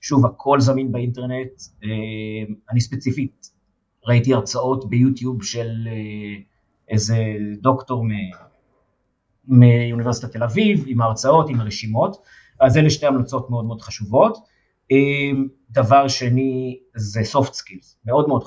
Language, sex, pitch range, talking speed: Hebrew, male, 110-130 Hz, 105 wpm